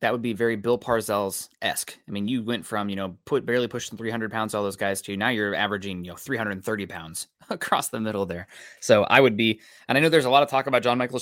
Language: English